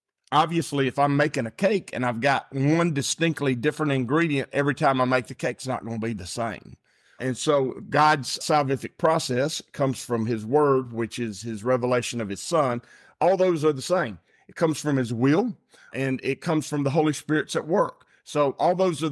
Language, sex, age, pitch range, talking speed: English, male, 50-69, 125-150 Hz, 205 wpm